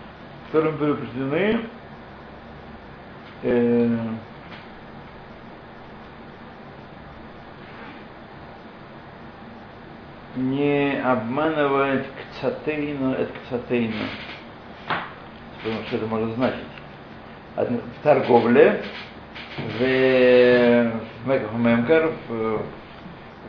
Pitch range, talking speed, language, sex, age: 115-140 Hz, 60 wpm, Russian, male, 50-69